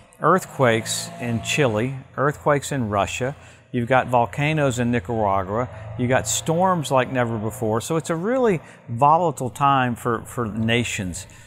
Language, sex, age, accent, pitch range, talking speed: English, male, 50-69, American, 115-140 Hz, 135 wpm